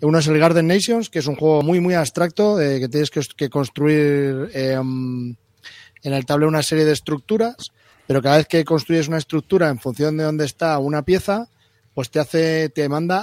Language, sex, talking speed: Spanish, male, 205 wpm